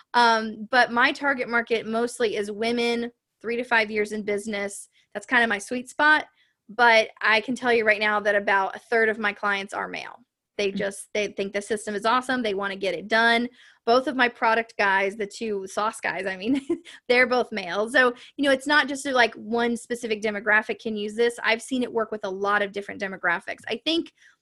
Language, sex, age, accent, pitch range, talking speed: English, female, 20-39, American, 210-240 Hz, 220 wpm